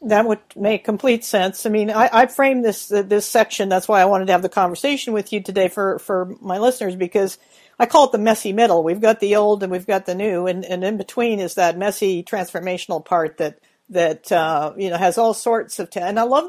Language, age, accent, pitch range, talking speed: English, 50-69, American, 175-210 Hz, 245 wpm